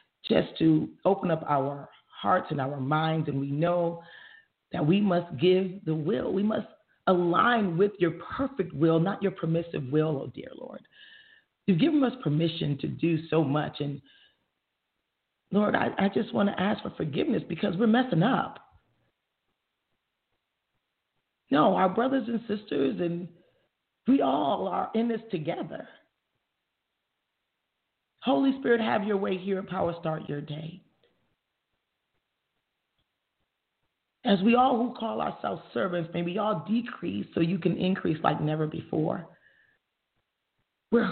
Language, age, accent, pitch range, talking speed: English, 40-59, American, 165-225 Hz, 140 wpm